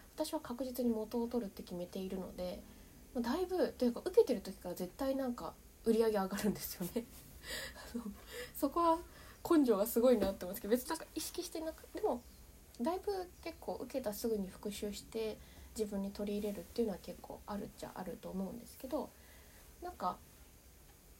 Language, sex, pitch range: Japanese, female, 210-285 Hz